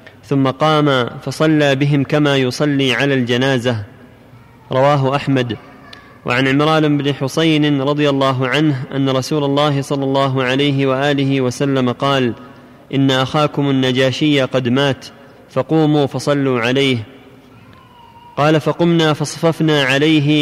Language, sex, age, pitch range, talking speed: Arabic, male, 20-39, 130-150 Hz, 110 wpm